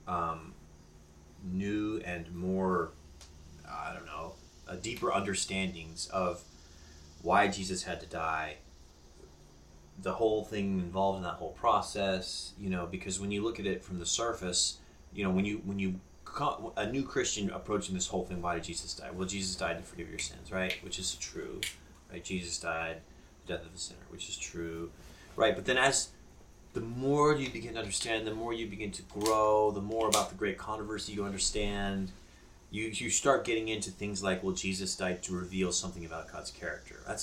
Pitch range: 80-100 Hz